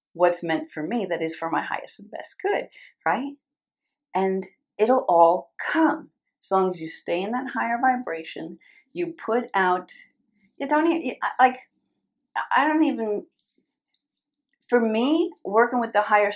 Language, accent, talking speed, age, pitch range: English, American, 155 wpm, 40-59, 180-275 Hz